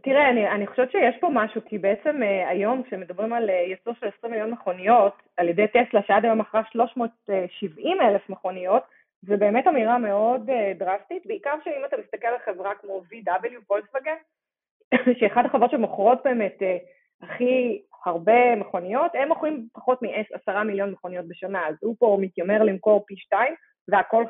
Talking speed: 155 wpm